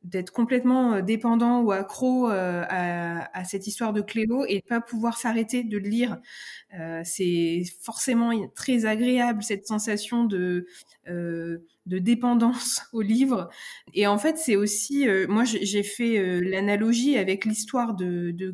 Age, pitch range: 20-39, 205-250 Hz